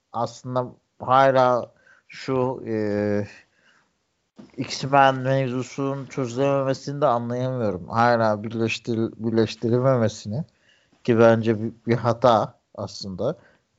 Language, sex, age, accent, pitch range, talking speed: Turkish, male, 60-79, native, 110-145 Hz, 80 wpm